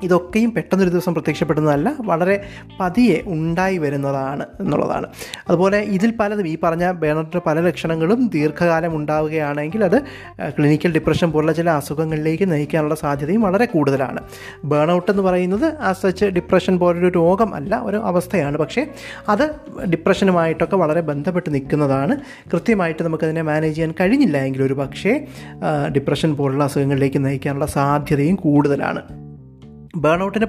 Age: 20-39